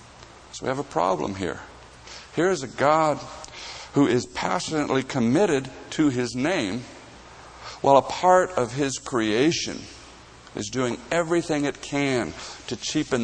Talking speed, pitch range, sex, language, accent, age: 130 wpm, 115-155 Hz, male, English, American, 50-69